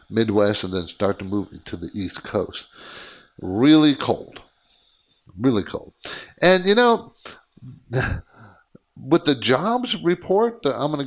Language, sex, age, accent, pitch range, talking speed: English, male, 50-69, American, 120-185 Hz, 135 wpm